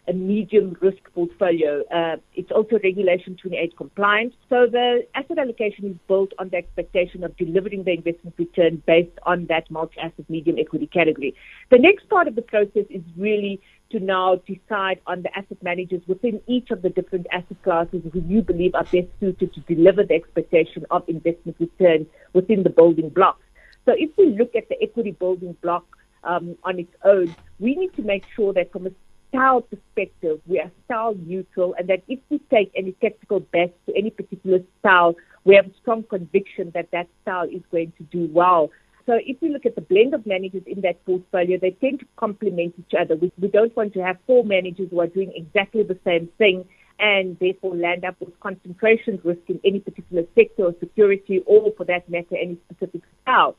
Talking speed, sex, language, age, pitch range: 195 wpm, female, English, 50-69, 175-210 Hz